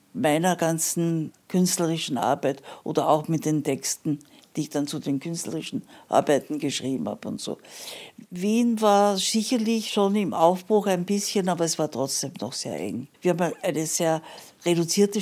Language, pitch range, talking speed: German, 160-200 Hz, 160 wpm